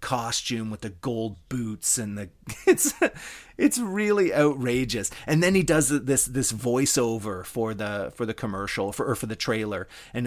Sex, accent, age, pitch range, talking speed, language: male, American, 30-49, 110-150 Hz, 165 wpm, English